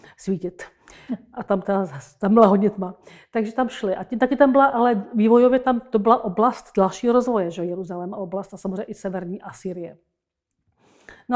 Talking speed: 180 wpm